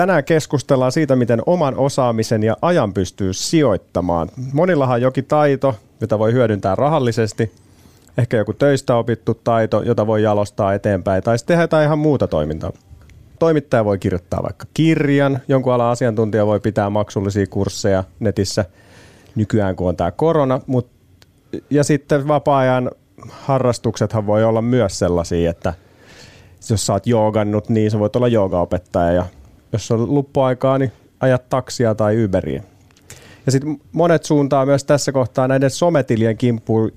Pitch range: 100-130 Hz